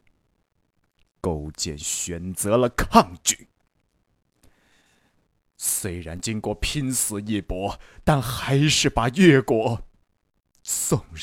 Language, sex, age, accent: Chinese, male, 20-39, native